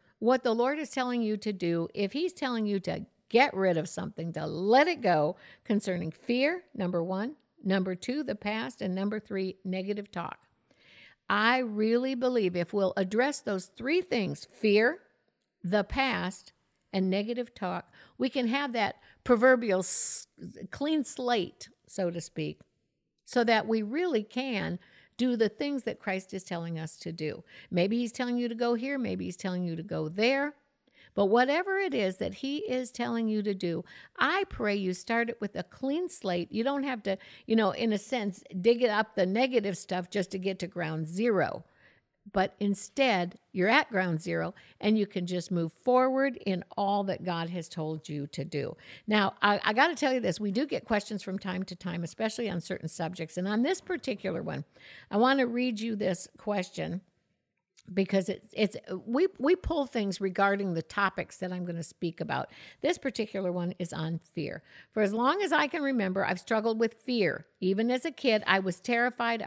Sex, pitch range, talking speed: female, 185-245 Hz, 190 wpm